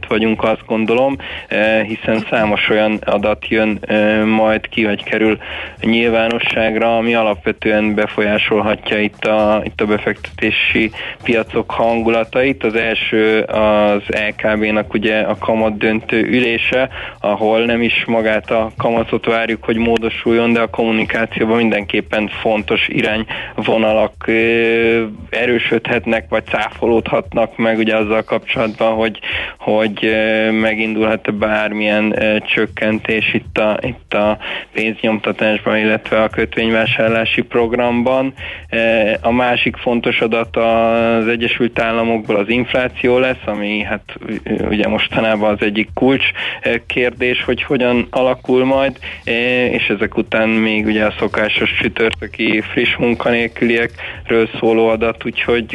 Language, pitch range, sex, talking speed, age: Hungarian, 110-115 Hz, male, 110 wpm, 20-39